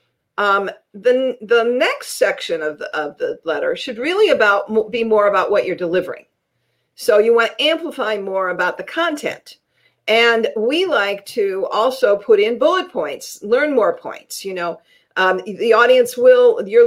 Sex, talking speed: female, 165 wpm